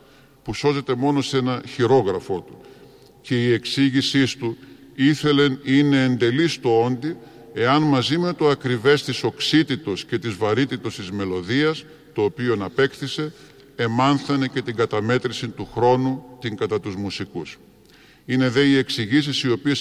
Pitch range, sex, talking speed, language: 115-140 Hz, female, 140 wpm, Greek